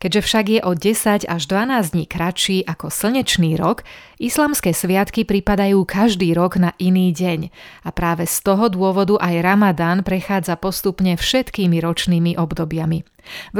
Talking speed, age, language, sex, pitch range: 145 wpm, 30-49, Slovak, female, 175-205 Hz